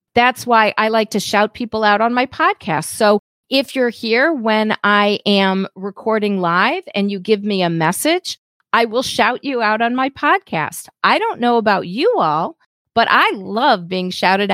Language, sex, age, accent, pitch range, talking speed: English, female, 40-59, American, 180-240 Hz, 185 wpm